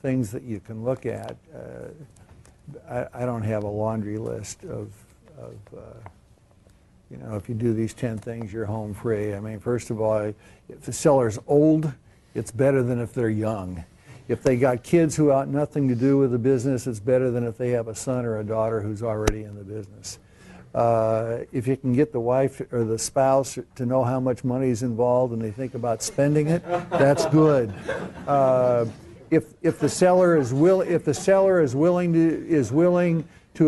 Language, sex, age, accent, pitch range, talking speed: English, male, 60-79, American, 115-145 Hz, 200 wpm